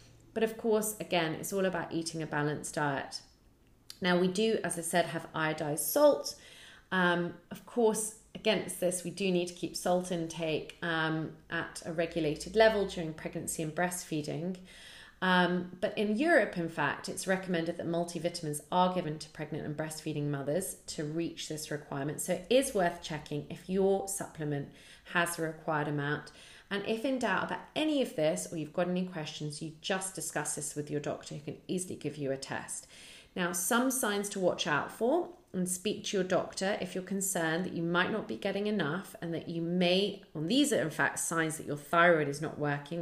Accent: British